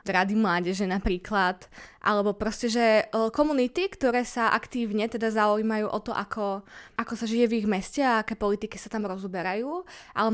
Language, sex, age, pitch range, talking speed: Slovak, female, 20-39, 200-235 Hz, 165 wpm